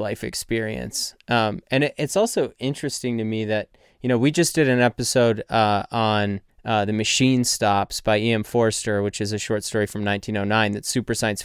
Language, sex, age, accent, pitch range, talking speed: English, male, 20-39, American, 105-120 Hz, 190 wpm